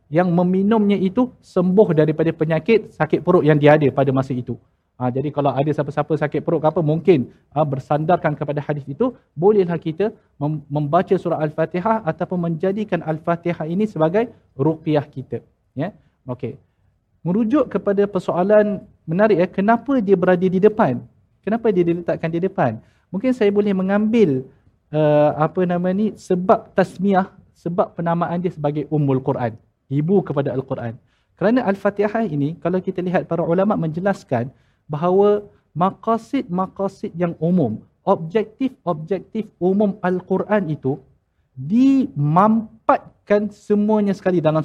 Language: Malayalam